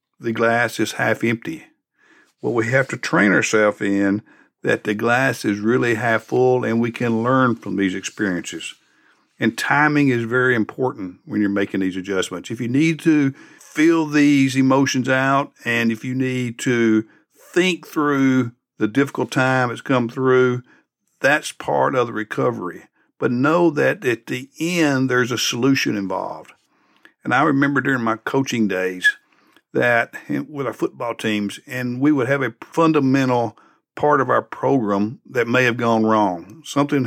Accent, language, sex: American, English, male